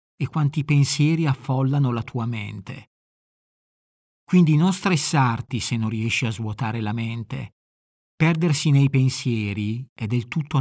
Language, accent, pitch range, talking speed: Italian, native, 115-150 Hz, 130 wpm